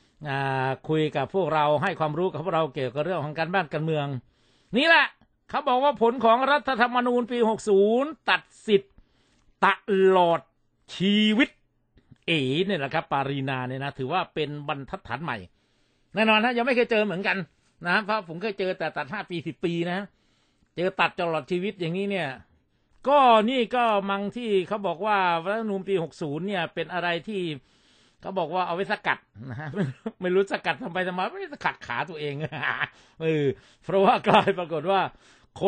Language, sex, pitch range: Thai, male, 155-210 Hz